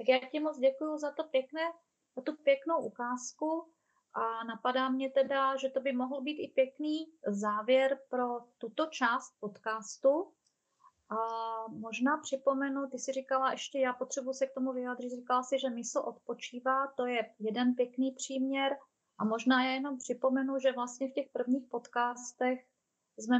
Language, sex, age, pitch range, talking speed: Czech, female, 30-49, 215-265 Hz, 155 wpm